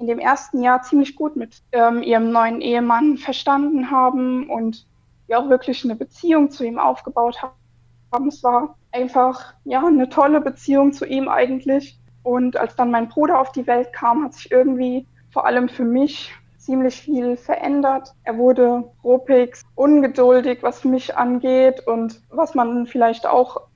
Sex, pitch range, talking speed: female, 240-275 Hz, 160 wpm